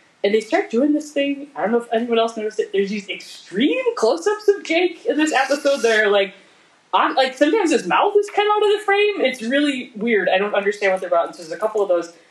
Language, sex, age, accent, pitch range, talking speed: English, female, 20-39, American, 165-240 Hz, 265 wpm